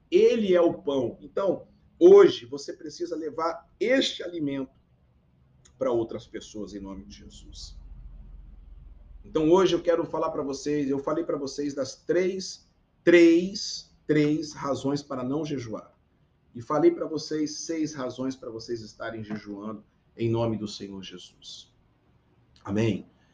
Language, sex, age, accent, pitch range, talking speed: Portuguese, male, 50-69, Brazilian, 105-150 Hz, 135 wpm